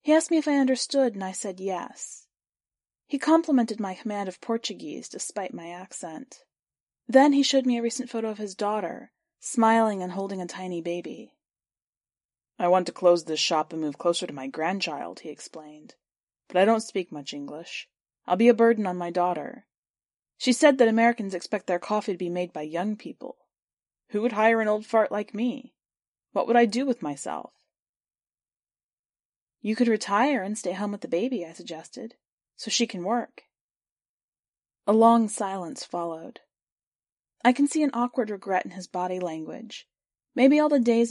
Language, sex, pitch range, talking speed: English, female, 180-240 Hz, 180 wpm